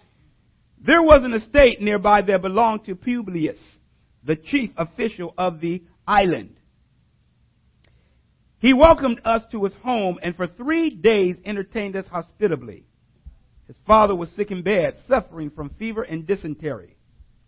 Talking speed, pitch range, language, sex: 135 wpm, 170-240 Hz, English, male